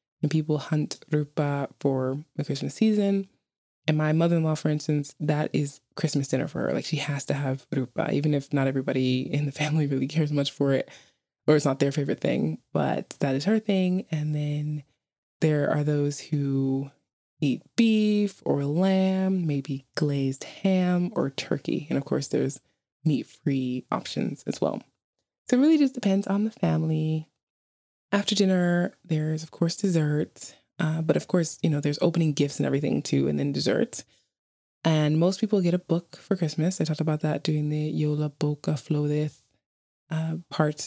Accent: American